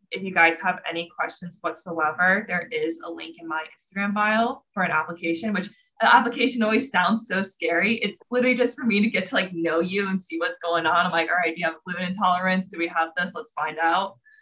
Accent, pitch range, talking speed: American, 165-200 Hz, 235 wpm